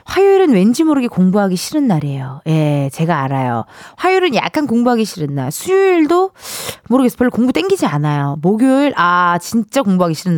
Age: 20-39